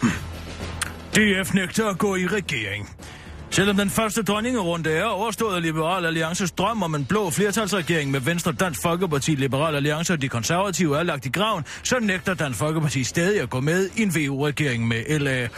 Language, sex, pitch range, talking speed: Danish, male, 130-190 Hz, 175 wpm